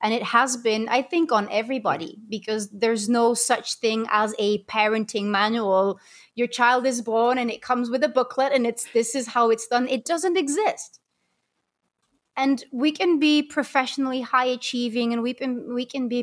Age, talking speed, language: 30-49, 185 wpm, English